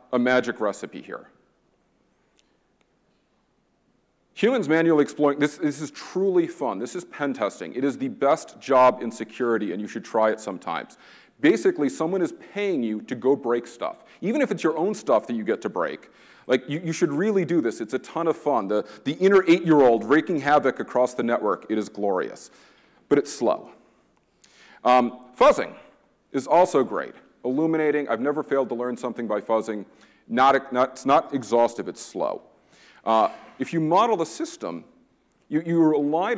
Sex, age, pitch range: male, 40-59, 115-150 Hz